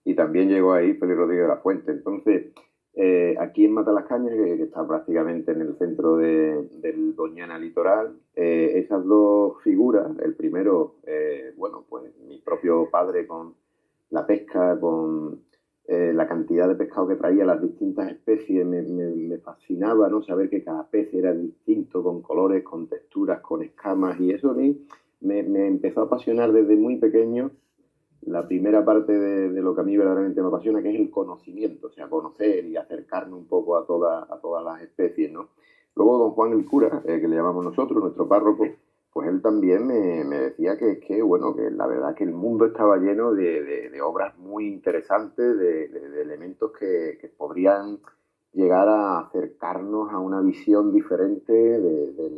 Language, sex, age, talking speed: Spanish, male, 30-49, 185 wpm